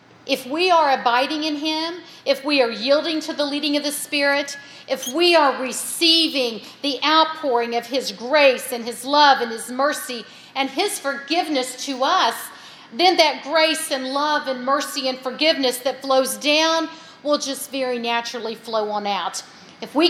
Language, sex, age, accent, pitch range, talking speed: English, female, 50-69, American, 240-295 Hz, 170 wpm